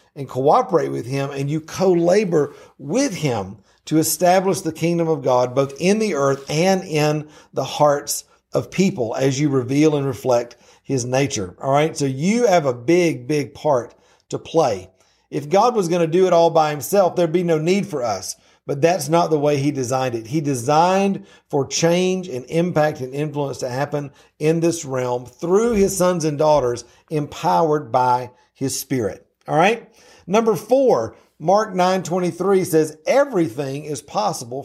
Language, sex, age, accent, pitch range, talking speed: English, male, 50-69, American, 150-200 Hz, 170 wpm